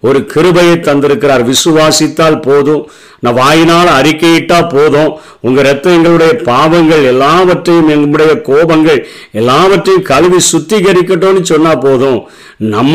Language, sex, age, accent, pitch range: Tamil, male, 50-69, native, 135-165 Hz